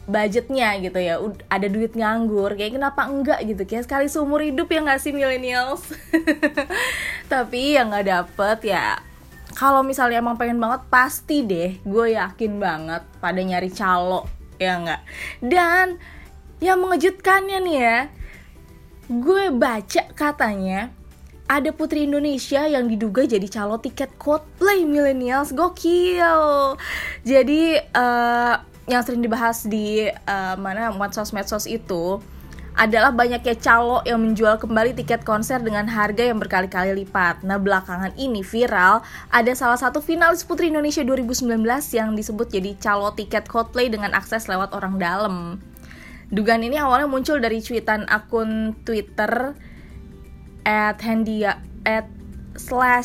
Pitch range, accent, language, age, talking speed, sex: 210-275 Hz, native, Indonesian, 20-39, 130 wpm, female